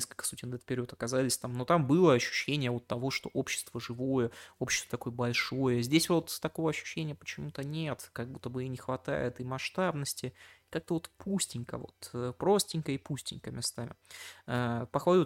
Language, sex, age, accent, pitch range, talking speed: Russian, male, 20-39, native, 120-145 Hz, 170 wpm